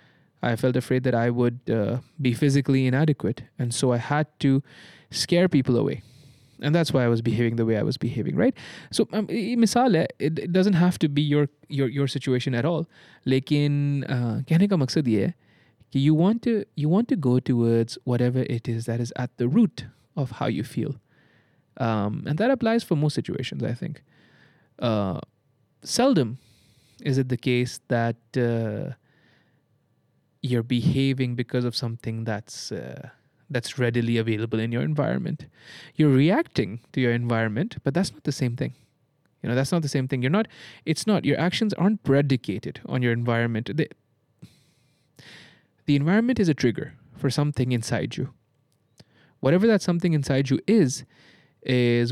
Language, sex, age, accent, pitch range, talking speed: English, male, 20-39, Indian, 120-150 Hz, 160 wpm